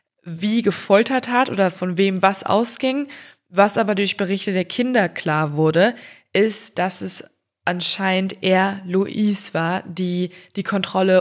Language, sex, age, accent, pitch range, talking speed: German, female, 20-39, German, 175-215 Hz, 140 wpm